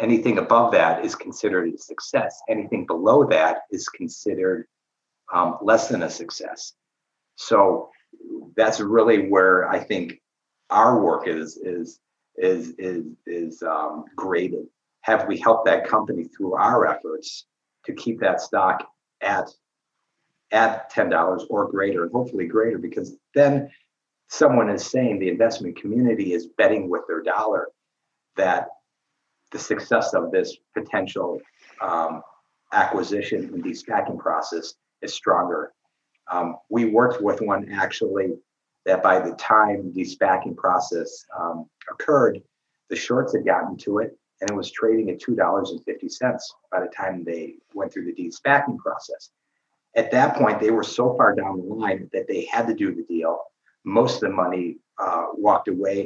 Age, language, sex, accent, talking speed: 50-69, English, male, American, 145 wpm